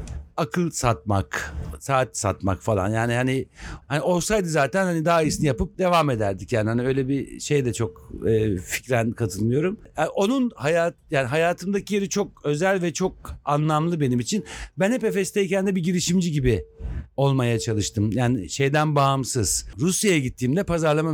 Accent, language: native, Turkish